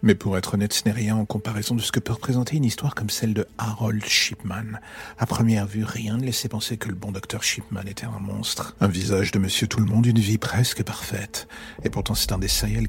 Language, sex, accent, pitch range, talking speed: French, male, French, 100-115 Hz, 245 wpm